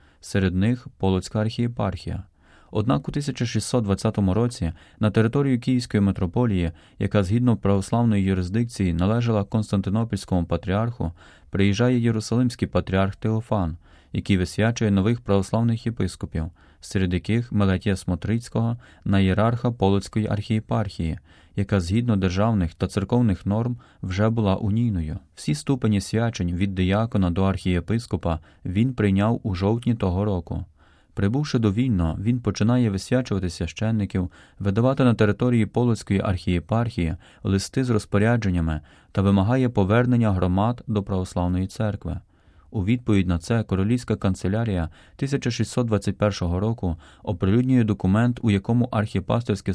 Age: 20-39